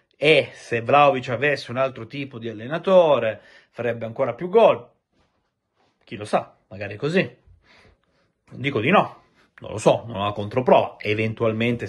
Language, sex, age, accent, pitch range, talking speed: Italian, male, 30-49, native, 110-150 Hz, 155 wpm